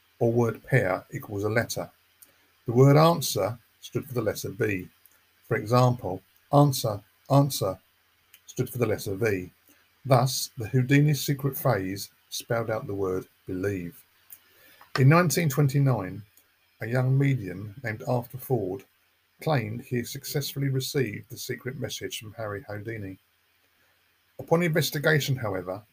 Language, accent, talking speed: English, British, 125 wpm